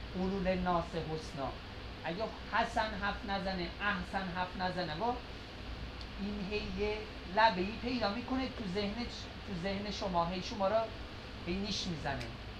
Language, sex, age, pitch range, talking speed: Persian, male, 30-49, 160-215 Hz, 125 wpm